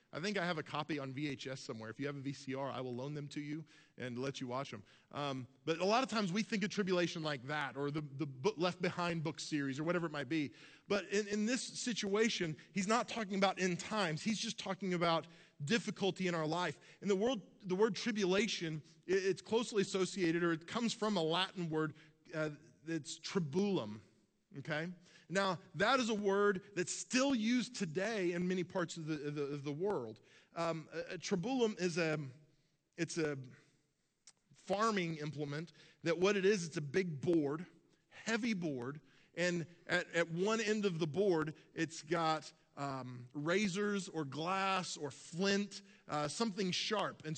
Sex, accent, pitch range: male, American, 155-200 Hz